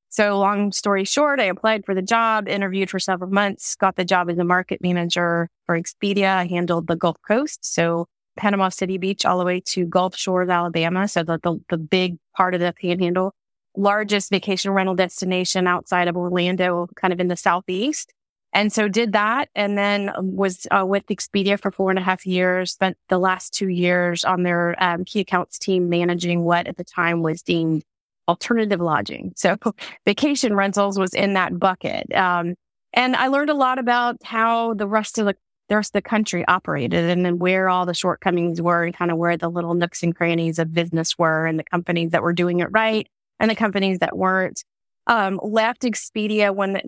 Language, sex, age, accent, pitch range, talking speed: English, female, 30-49, American, 175-200 Hz, 200 wpm